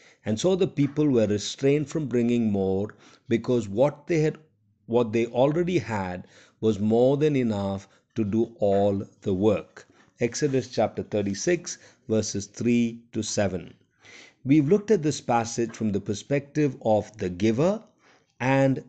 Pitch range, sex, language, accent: 105-145 Hz, male, Hindi, native